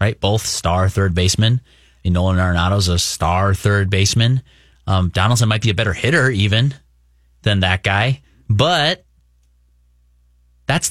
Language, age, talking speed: English, 30-49, 145 wpm